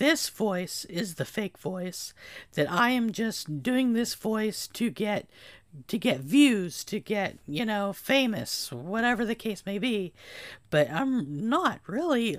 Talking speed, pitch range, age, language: 155 wpm, 180-235 Hz, 50-69, English